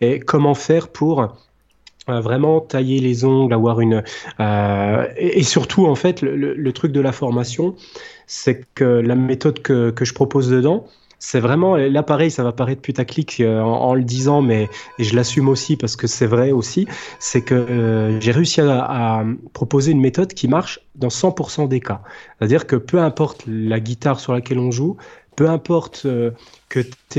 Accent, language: French, French